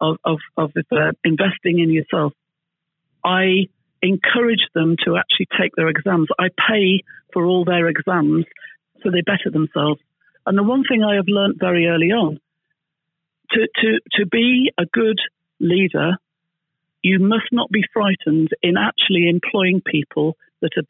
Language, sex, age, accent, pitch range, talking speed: English, female, 50-69, British, 160-205 Hz, 150 wpm